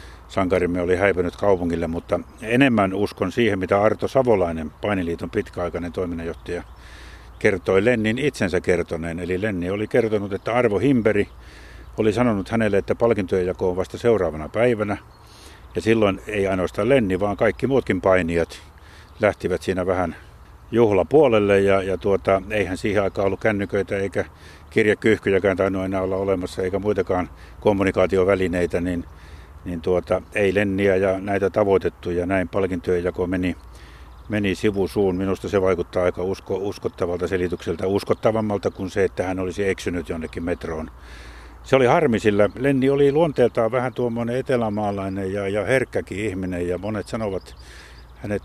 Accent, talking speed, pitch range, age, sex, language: native, 135 wpm, 85-105 Hz, 50-69, male, Finnish